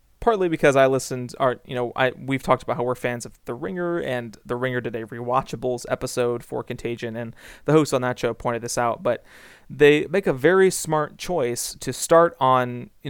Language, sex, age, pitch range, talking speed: English, male, 30-49, 125-150 Hz, 210 wpm